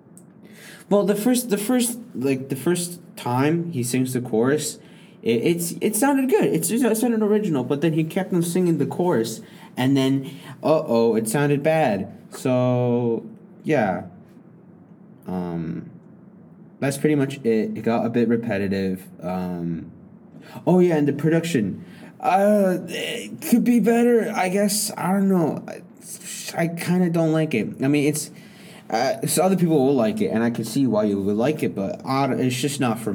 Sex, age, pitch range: male, 20-39, 110-175 Hz